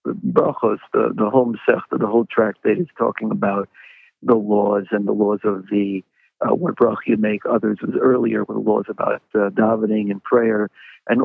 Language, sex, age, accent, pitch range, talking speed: English, male, 50-69, American, 105-140 Hz, 180 wpm